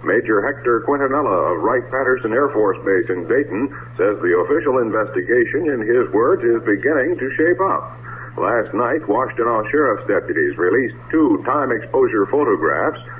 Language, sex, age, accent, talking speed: English, male, 60-79, American, 145 wpm